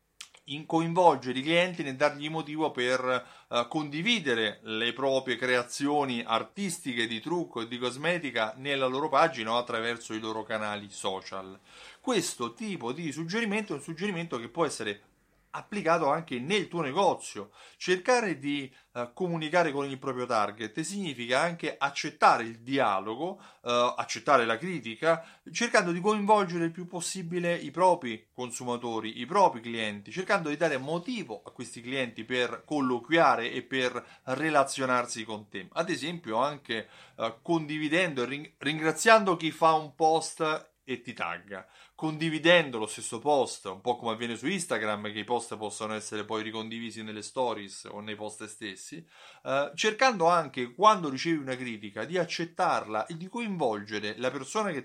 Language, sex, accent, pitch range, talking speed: Italian, male, native, 115-165 Hz, 145 wpm